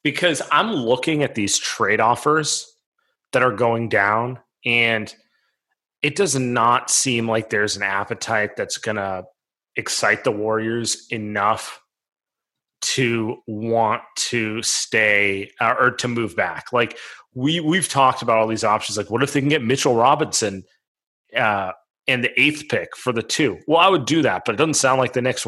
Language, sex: English, male